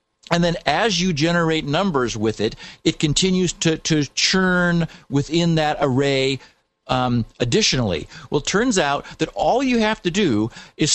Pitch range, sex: 135-180 Hz, male